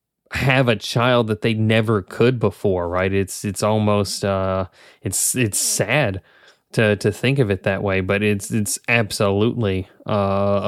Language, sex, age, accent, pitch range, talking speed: English, male, 20-39, American, 100-125 Hz, 155 wpm